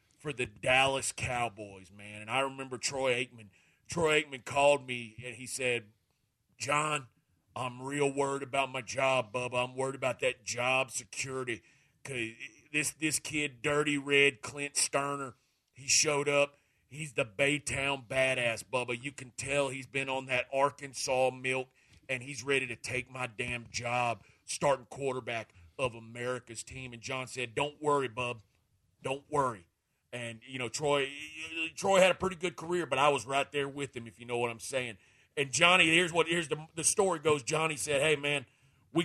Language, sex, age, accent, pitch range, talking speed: English, male, 40-59, American, 125-145 Hz, 175 wpm